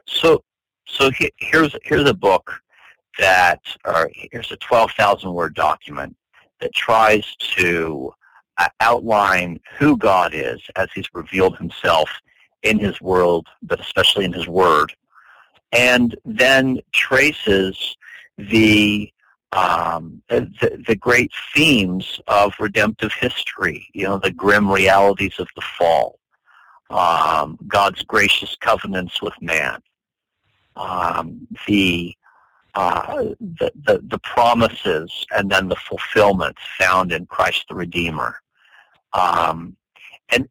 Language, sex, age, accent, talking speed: English, male, 50-69, American, 115 wpm